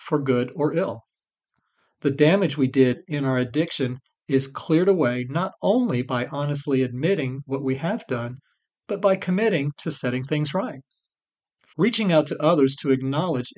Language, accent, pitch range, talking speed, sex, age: English, American, 130-175 Hz, 160 wpm, male, 50-69